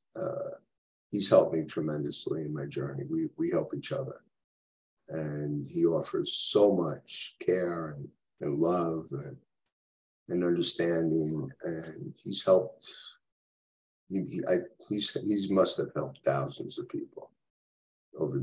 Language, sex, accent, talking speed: English, male, American, 130 wpm